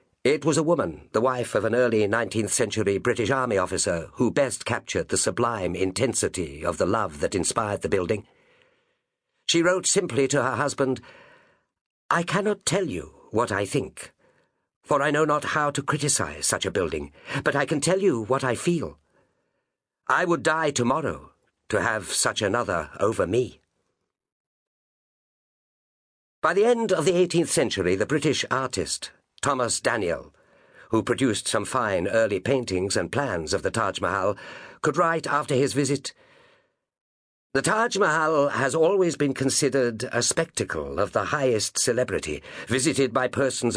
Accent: British